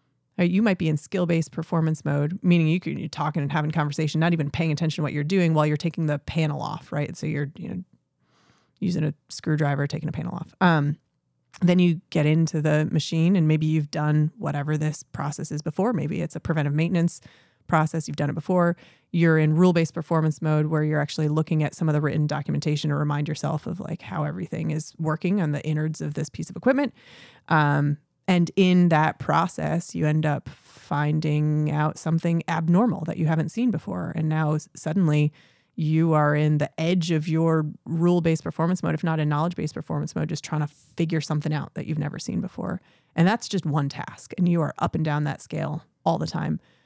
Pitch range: 150-170 Hz